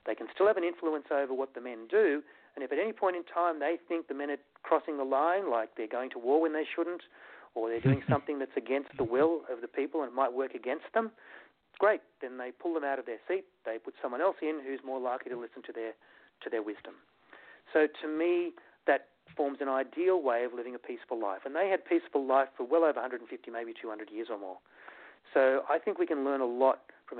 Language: English